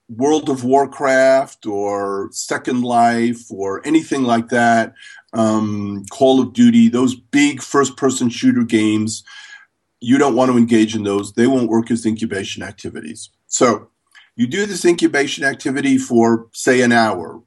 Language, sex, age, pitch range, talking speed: English, male, 50-69, 110-155 Hz, 150 wpm